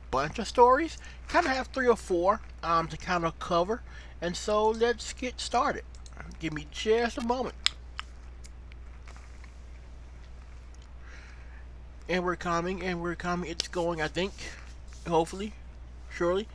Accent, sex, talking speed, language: American, male, 130 wpm, English